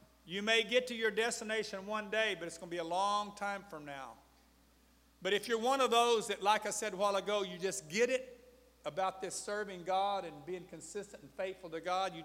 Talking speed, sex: 230 wpm, male